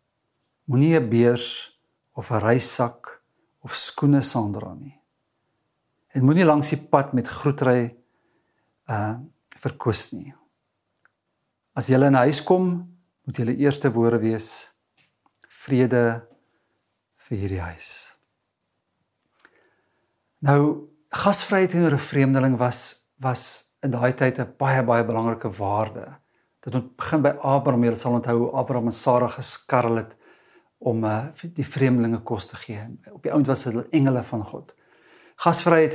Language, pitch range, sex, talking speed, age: English, 115-145 Hz, male, 130 wpm, 50-69